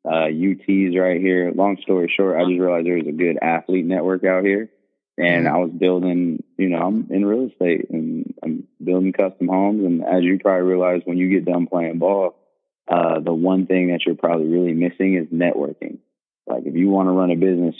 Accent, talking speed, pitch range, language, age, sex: American, 210 wpm, 85-90 Hz, English, 20-39, male